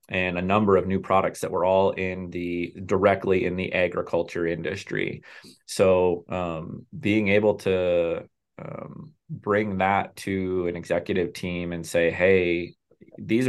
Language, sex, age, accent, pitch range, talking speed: English, male, 30-49, American, 85-95 Hz, 140 wpm